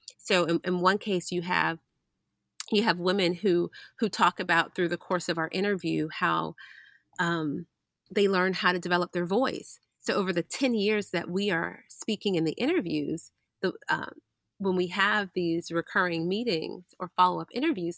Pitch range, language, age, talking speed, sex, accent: 170-200 Hz, English, 30-49, 175 wpm, female, American